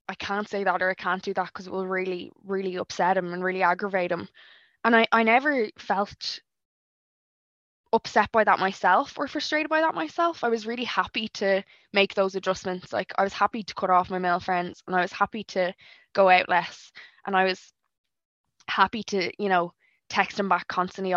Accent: Irish